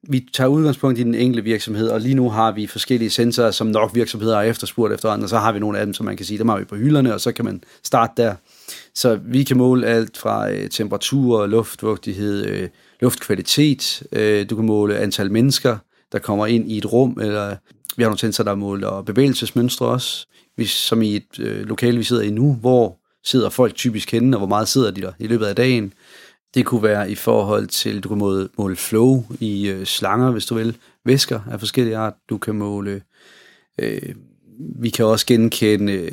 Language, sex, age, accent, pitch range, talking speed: Danish, male, 30-49, native, 105-120 Hz, 200 wpm